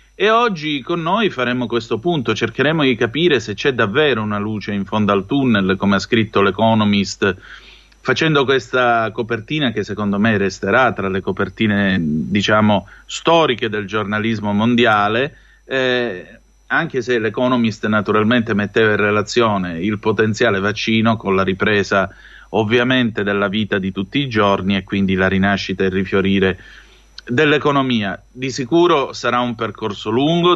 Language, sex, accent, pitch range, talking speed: Italian, male, native, 100-130 Hz, 145 wpm